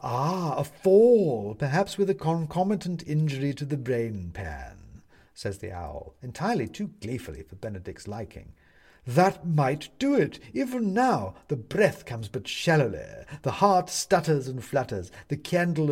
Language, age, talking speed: English, 50-69, 145 wpm